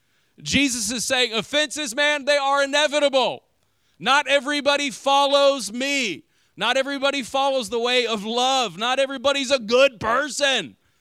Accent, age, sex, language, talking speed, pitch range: American, 40-59, male, English, 130 wpm, 195-270 Hz